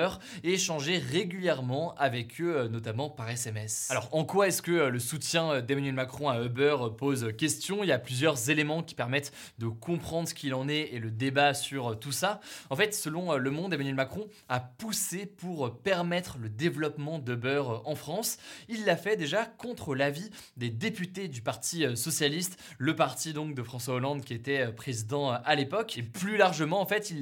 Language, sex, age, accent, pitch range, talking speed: French, male, 20-39, French, 130-170 Hz, 185 wpm